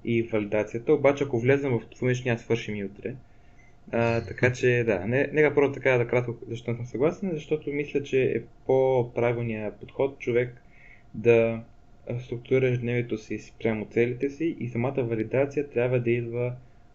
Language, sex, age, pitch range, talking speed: Bulgarian, male, 20-39, 115-130 Hz, 165 wpm